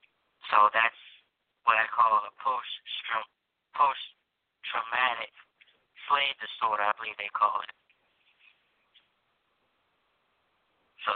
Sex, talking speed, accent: male, 80 wpm, American